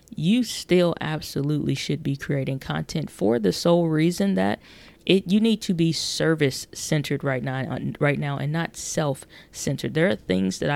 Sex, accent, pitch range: female, American, 140-160 Hz